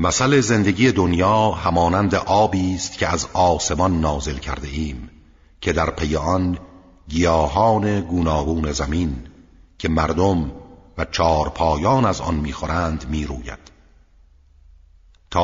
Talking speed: 110 wpm